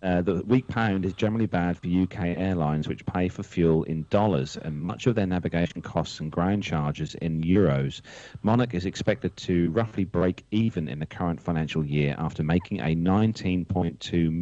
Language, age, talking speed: English, 40-59, 180 wpm